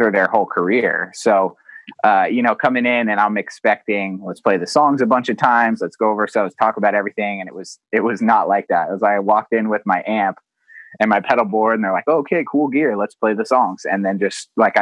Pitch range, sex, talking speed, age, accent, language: 100-120 Hz, male, 255 wpm, 20-39, American, English